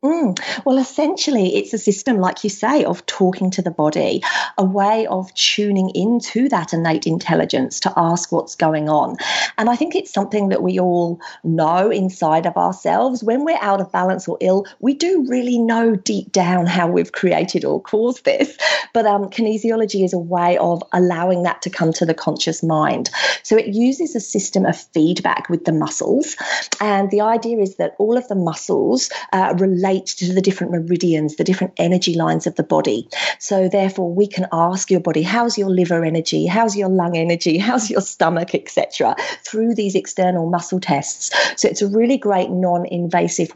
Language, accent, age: English, British, 40-59